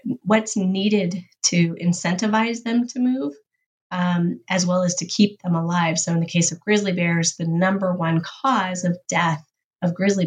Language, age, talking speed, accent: English, 30-49, 175 wpm, American